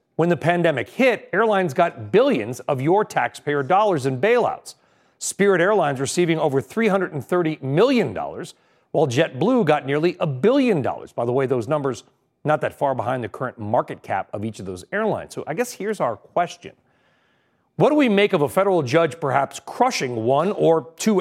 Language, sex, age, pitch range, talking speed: English, male, 40-59, 145-200 Hz, 180 wpm